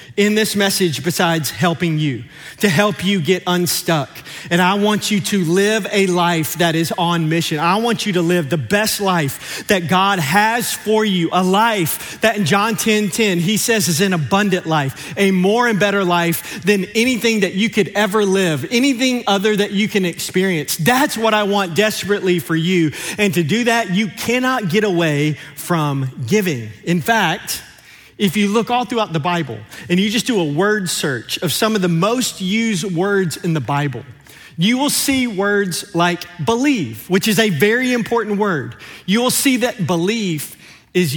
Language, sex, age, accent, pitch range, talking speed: English, male, 30-49, American, 165-210 Hz, 185 wpm